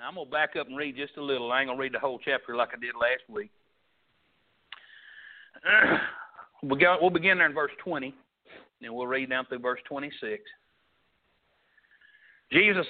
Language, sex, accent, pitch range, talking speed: English, male, American, 155-235 Hz, 170 wpm